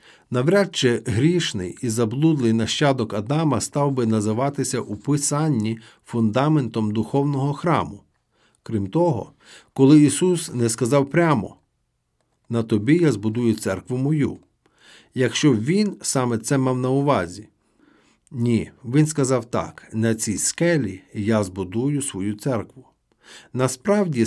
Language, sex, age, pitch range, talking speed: Ukrainian, male, 50-69, 110-150 Hz, 120 wpm